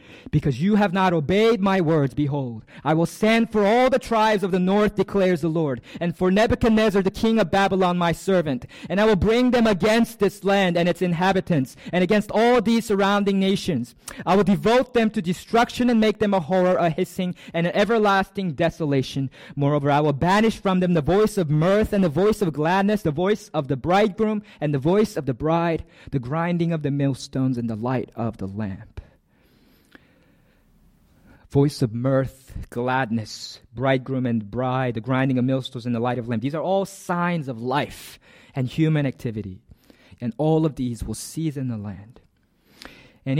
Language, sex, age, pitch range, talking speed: English, male, 20-39, 135-205 Hz, 185 wpm